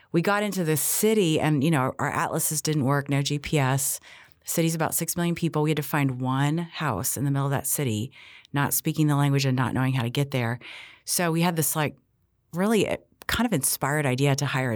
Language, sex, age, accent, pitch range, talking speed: English, female, 30-49, American, 130-170 Hz, 220 wpm